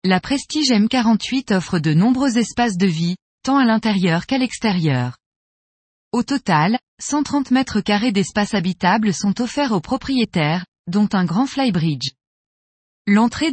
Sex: female